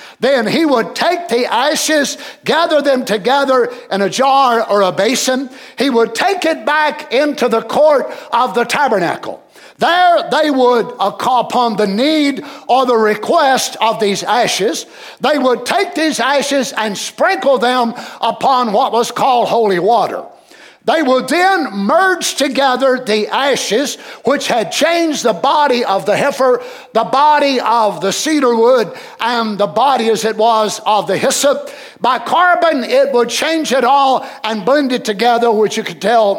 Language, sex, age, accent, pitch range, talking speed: English, male, 60-79, American, 230-295 Hz, 160 wpm